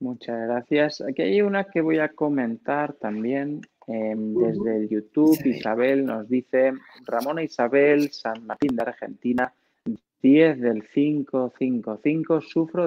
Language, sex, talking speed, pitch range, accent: Spanish, male, 125 wpm, 120-160 Hz, Spanish